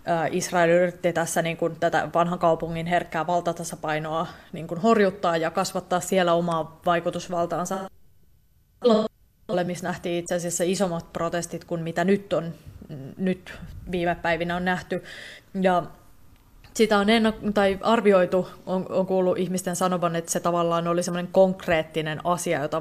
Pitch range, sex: 170-185 Hz, female